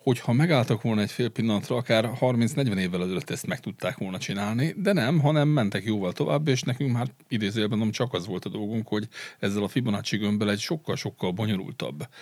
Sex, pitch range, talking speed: male, 100-120 Hz, 185 wpm